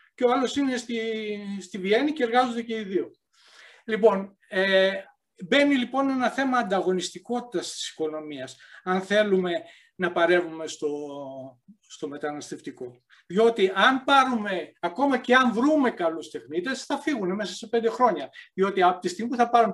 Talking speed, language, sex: 150 wpm, Greek, male